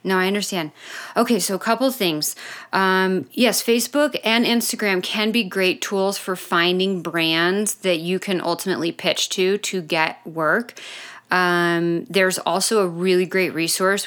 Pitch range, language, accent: 170-210 Hz, English, American